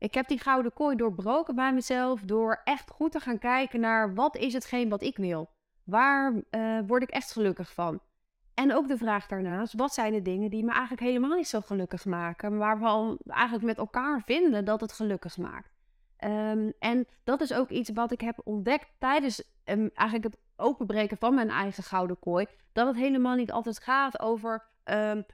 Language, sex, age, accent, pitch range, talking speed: Dutch, female, 20-39, Dutch, 210-255 Hz, 195 wpm